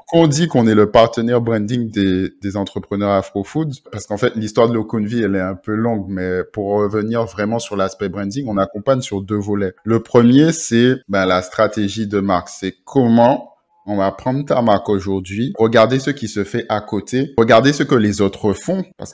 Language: French